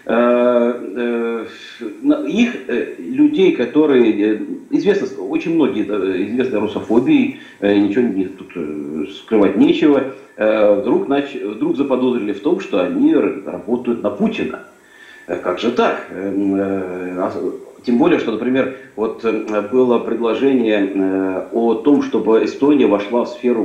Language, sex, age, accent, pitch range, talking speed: Russian, male, 40-59, native, 100-145 Hz, 100 wpm